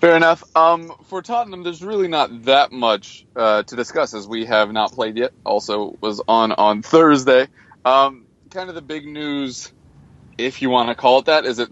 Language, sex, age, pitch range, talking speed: English, male, 20-39, 110-135 Hz, 205 wpm